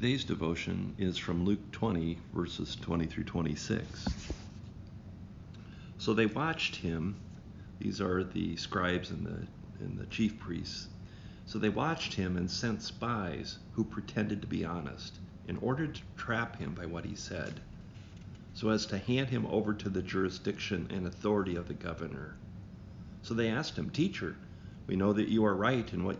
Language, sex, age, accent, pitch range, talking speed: English, male, 50-69, American, 95-110 Hz, 165 wpm